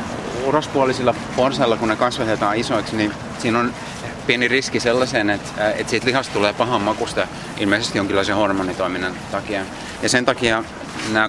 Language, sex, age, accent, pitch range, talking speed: Finnish, male, 30-49, native, 105-120 Hz, 145 wpm